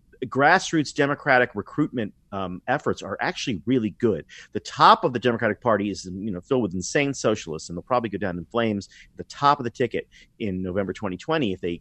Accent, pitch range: American, 100-145 Hz